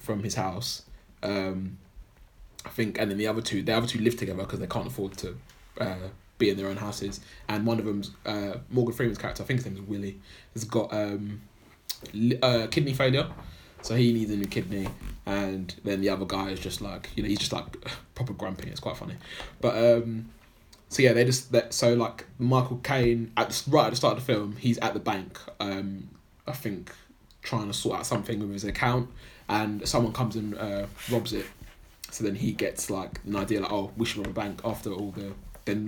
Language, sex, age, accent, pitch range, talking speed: English, male, 20-39, British, 100-125 Hz, 220 wpm